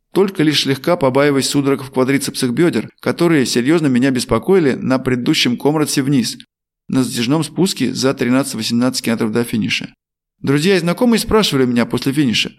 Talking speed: 150 wpm